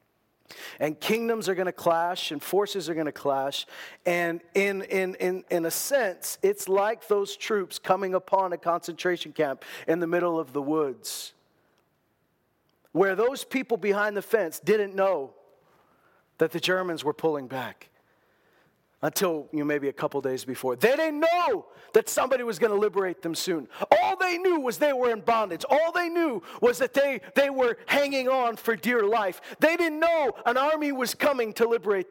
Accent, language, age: American, English, 40-59